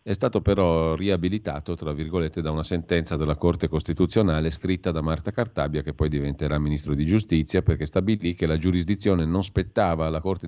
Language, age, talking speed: Italian, 40-59, 180 wpm